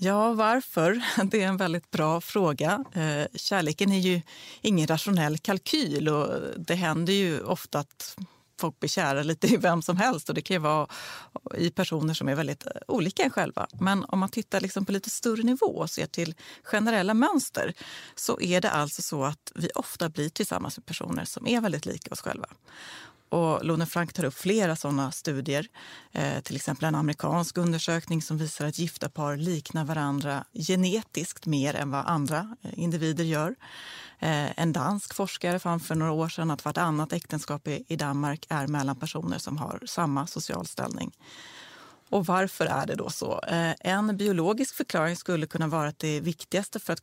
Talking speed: 175 wpm